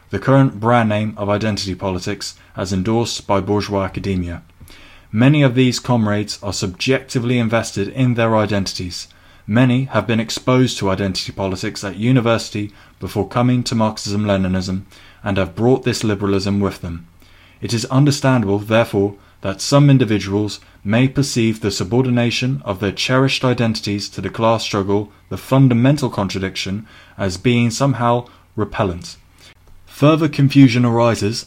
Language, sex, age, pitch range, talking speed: English, male, 20-39, 100-125 Hz, 135 wpm